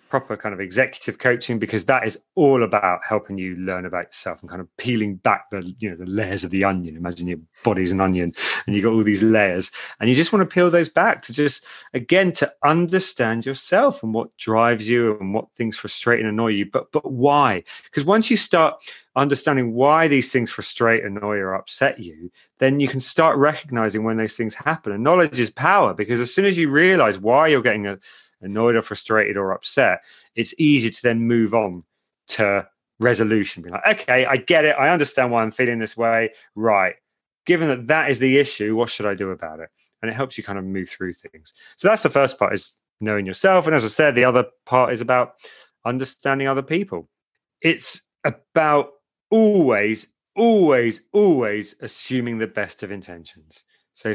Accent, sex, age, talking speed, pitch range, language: British, male, 30-49, 200 wpm, 105-140 Hz, English